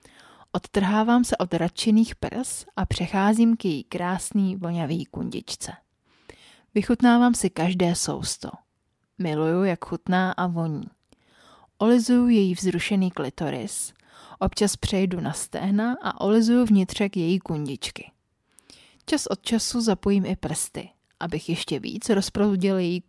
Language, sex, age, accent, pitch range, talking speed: Czech, female, 30-49, native, 170-220 Hz, 115 wpm